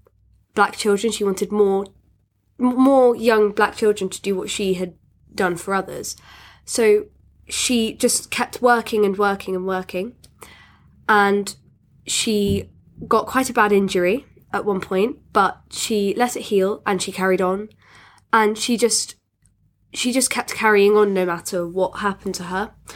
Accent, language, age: British, English, 10-29